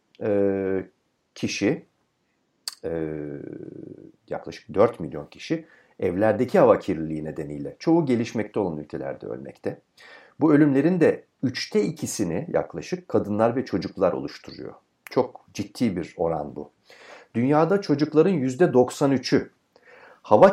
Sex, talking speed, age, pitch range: male, 95 wpm, 60-79, 90-140 Hz